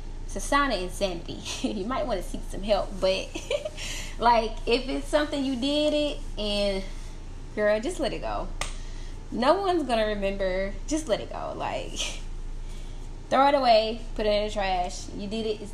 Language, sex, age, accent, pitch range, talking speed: English, female, 10-29, American, 200-280 Hz, 170 wpm